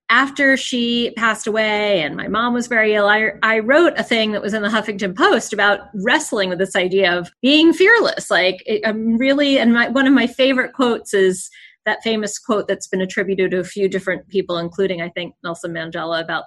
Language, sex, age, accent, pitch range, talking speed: English, female, 30-49, American, 185-245 Hz, 210 wpm